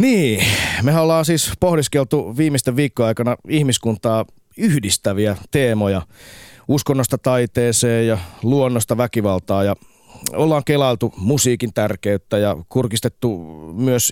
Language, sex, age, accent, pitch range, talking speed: Finnish, male, 30-49, native, 105-145 Hz, 100 wpm